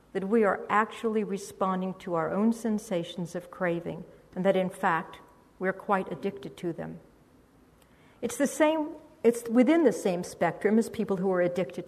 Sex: female